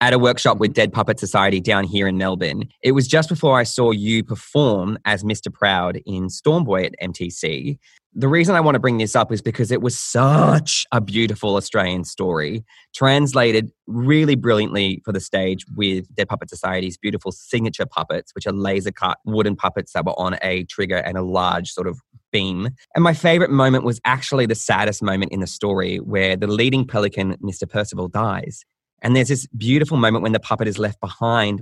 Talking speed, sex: 195 wpm, male